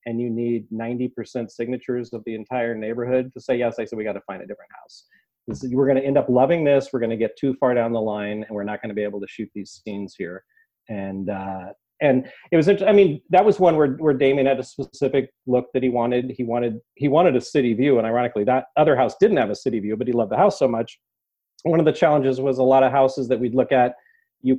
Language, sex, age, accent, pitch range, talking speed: English, male, 40-59, American, 110-135 Hz, 260 wpm